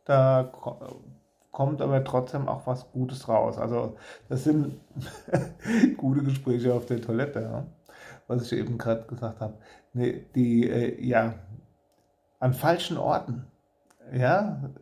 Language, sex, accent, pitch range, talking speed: German, male, German, 115-140 Hz, 125 wpm